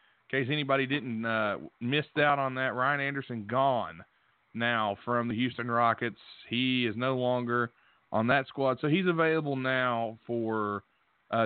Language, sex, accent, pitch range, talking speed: English, male, American, 115-140 Hz, 155 wpm